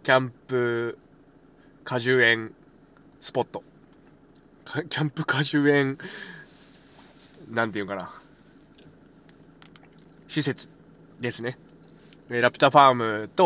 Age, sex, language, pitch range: 20-39, male, Japanese, 120-150 Hz